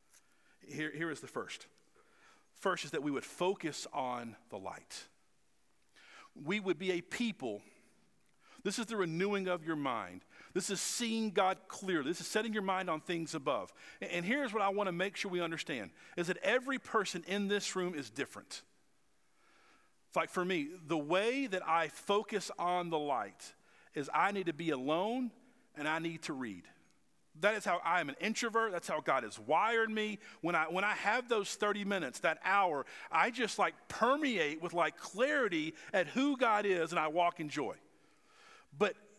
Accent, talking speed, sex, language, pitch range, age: American, 185 wpm, male, English, 175-230 Hz, 50-69